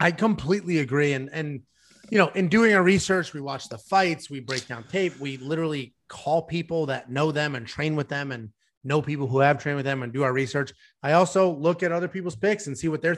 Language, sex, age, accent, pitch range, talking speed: English, male, 30-49, American, 135-185 Hz, 240 wpm